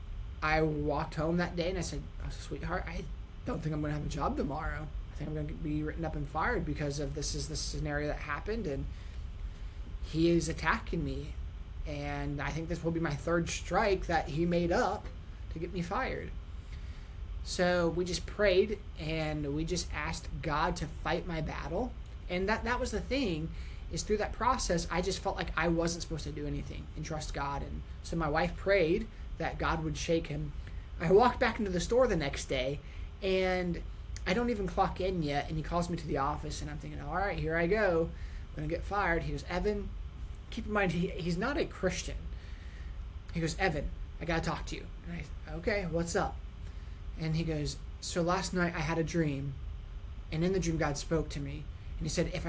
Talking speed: 215 wpm